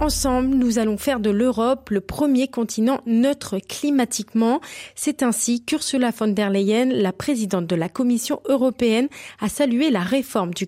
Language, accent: French, French